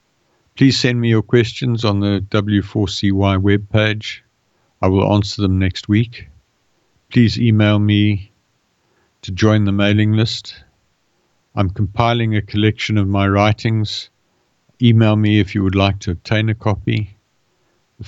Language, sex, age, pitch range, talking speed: English, male, 60-79, 95-110 Hz, 135 wpm